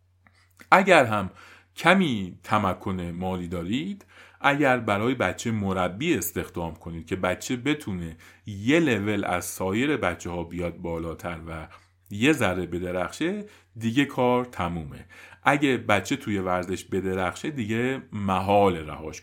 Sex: male